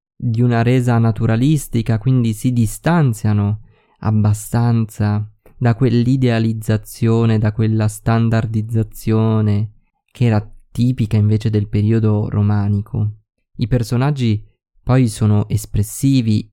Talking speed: 90 wpm